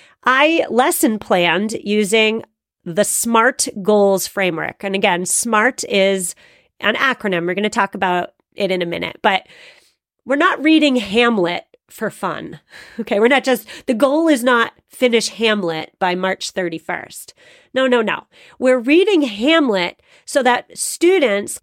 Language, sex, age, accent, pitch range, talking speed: English, female, 30-49, American, 200-265 Hz, 145 wpm